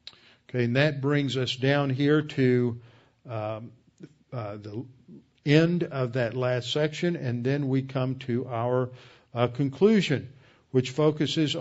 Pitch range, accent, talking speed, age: 115-135 Hz, American, 135 wpm, 50-69